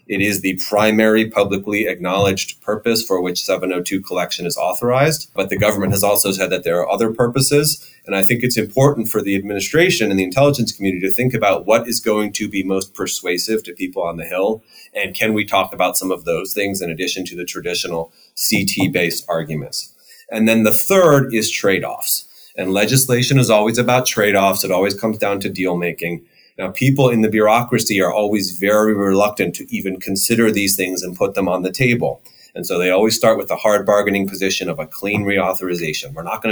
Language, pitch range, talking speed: English, 95-115 Hz, 200 wpm